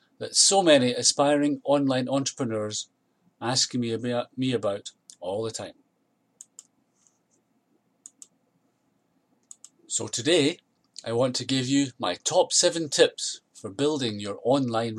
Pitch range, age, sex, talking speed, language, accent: 115-145 Hz, 30-49, male, 115 wpm, English, British